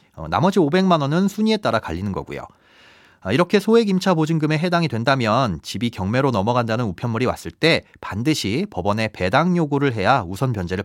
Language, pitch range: Korean, 105-165 Hz